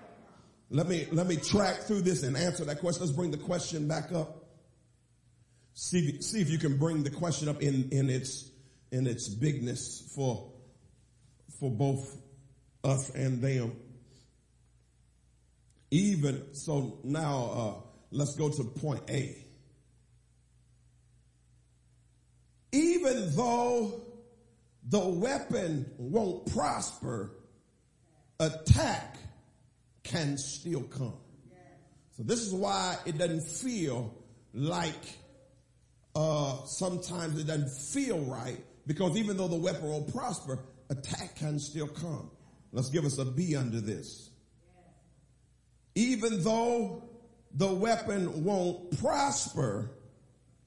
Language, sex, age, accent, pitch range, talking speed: English, male, 50-69, American, 125-175 Hz, 110 wpm